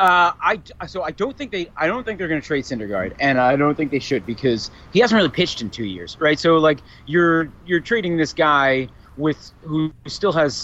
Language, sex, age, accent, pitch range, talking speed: English, male, 30-49, American, 115-150 Hz, 230 wpm